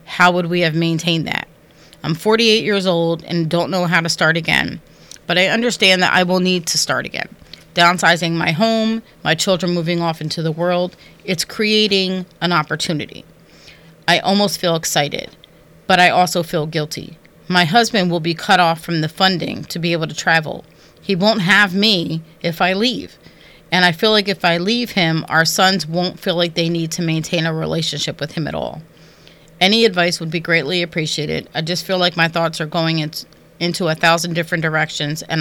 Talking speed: 195 wpm